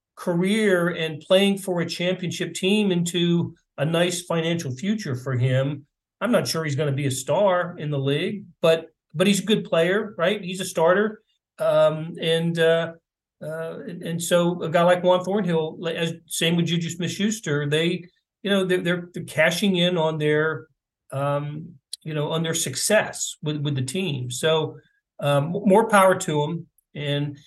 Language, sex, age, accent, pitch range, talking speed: English, male, 40-59, American, 140-180 Hz, 175 wpm